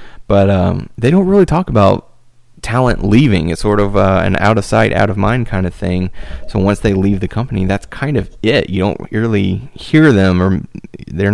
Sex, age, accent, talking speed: male, 30-49, American, 210 wpm